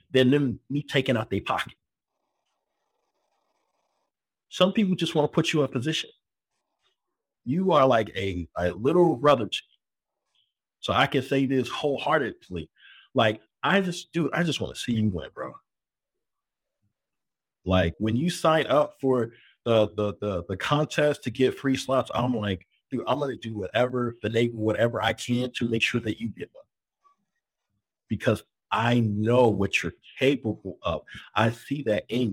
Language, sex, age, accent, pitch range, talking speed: English, male, 50-69, American, 110-150 Hz, 165 wpm